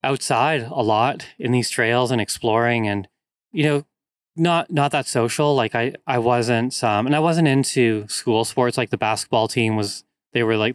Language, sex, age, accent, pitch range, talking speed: English, male, 20-39, American, 105-130 Hz, 190 wpm